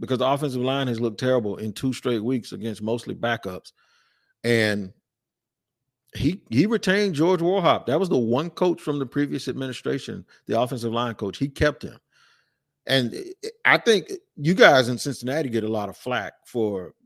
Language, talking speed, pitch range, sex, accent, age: English, 170 wpm, 120-145 Hz, male, American, 50-69